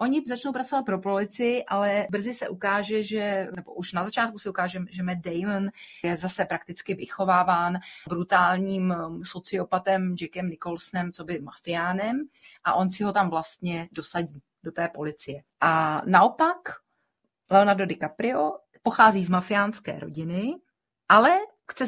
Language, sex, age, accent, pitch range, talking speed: Czech, female, 30-49, native, 180-220 Hz, 135 wpm